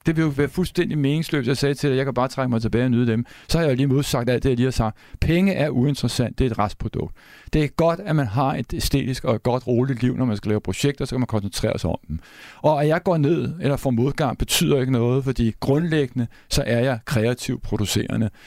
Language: Danish